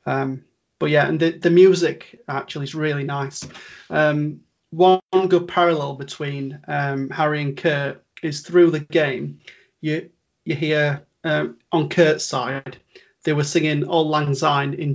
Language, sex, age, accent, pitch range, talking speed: English, male, 30-49, British, 140-165 Hz, 155 wpm